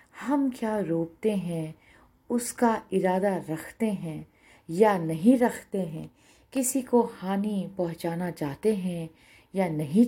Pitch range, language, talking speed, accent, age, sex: 165-230 Hz, Hindi, 120 wpm, native, 50-69, female